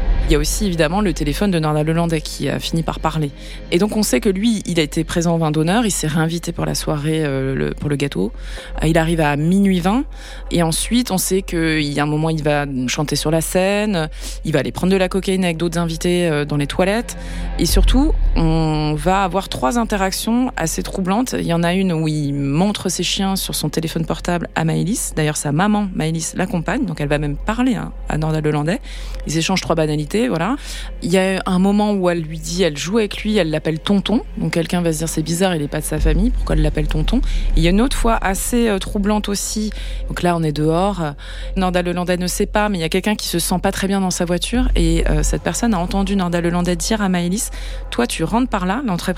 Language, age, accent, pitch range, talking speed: French, 20-39, French, 155-195 Hz, 245 wpm